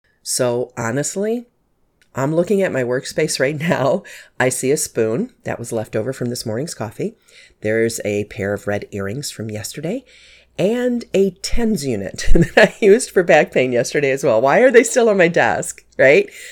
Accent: American